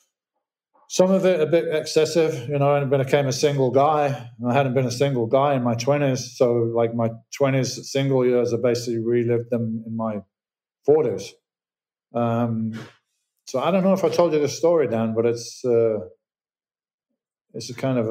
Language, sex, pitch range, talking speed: English, male, 115-140 Hz, 180 wpm